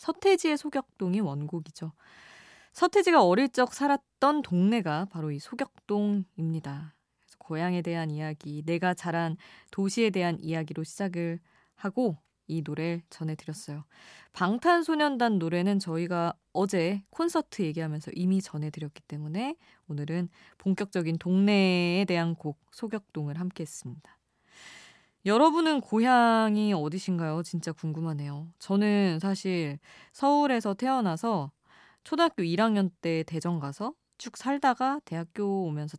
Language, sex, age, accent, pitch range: Korean, female, 20-39, native, 160-235 Hz